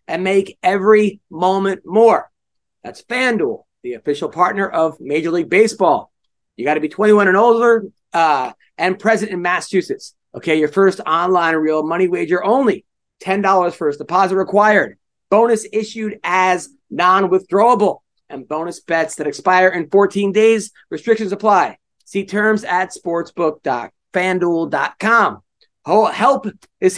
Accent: American